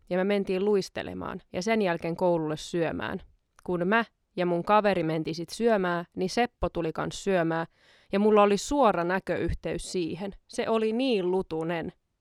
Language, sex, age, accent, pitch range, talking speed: Finnish, female, 20-39, native, 175-210 Hz, 155 wpm